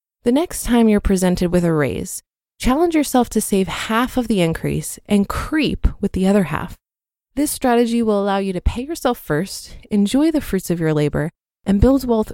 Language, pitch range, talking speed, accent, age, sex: English, 185-245 Hz, 195 wpm, American, 20-39, female